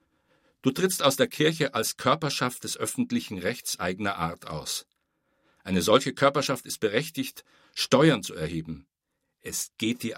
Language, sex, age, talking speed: German, male, 60-79, 140 wpm